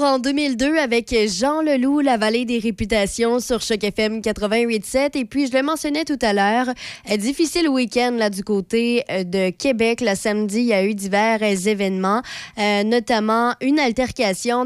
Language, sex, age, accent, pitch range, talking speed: French, female, 20-39, Canadian, 210-255 Hz, 165 wpm